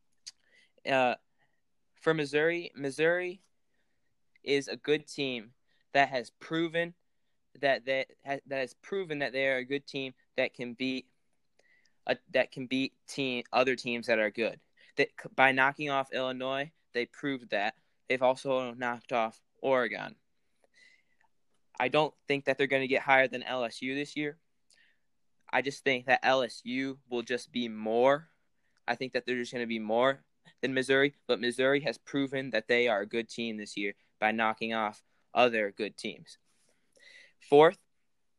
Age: 10-29